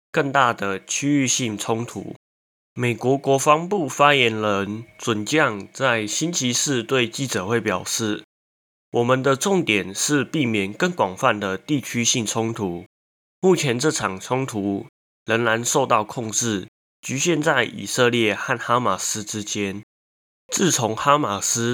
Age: 20-39